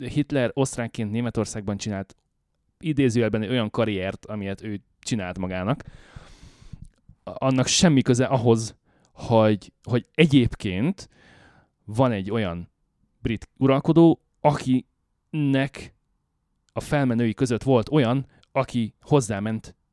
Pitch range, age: 100-130 Hz, 30-49